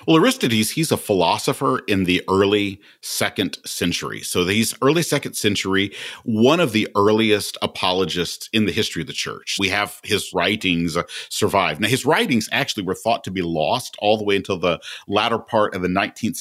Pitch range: 95-115 Hz